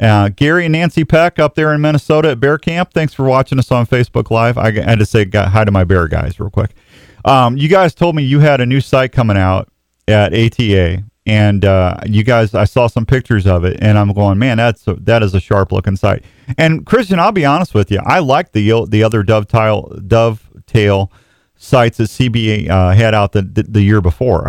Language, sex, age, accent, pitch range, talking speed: English, male, 40-59, American, 100-130 Hz, 225 wpm